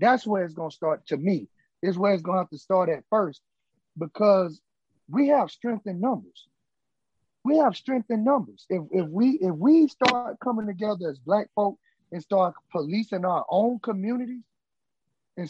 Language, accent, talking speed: English, American, 175 wpm